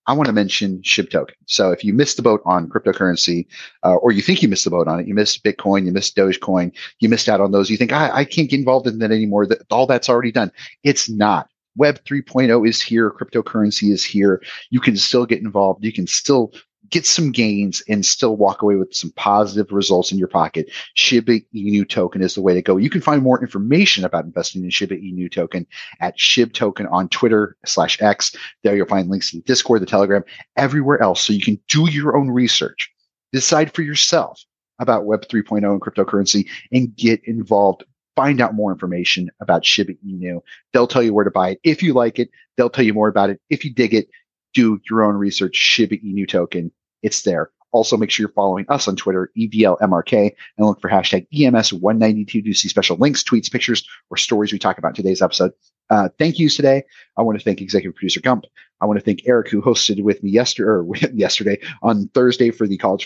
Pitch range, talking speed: 100-125 Hz, 215 wpm